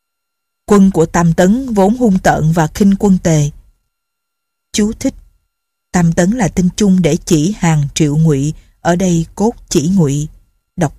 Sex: female